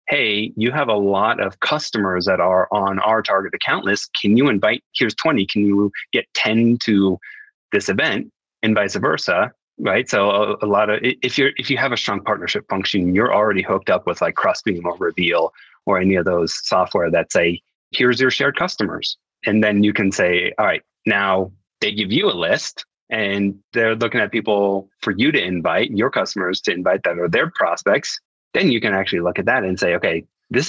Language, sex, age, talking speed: English, male, 30-49, 205 wpm